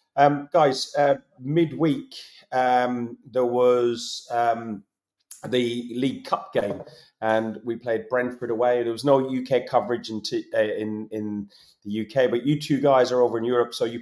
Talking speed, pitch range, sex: 165 wpm, 115-145 Hz, male